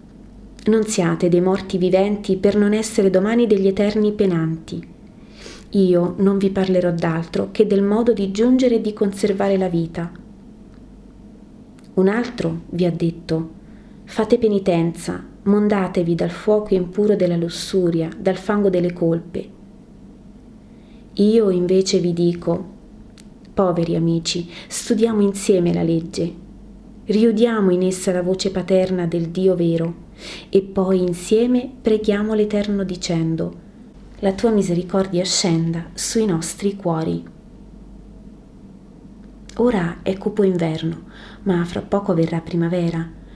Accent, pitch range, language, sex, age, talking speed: native, 175-215 Hz, Italian, female, 30-49, 120 wpm